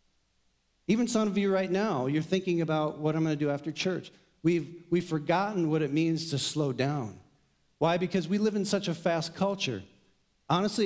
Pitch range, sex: 125-175 Hz, male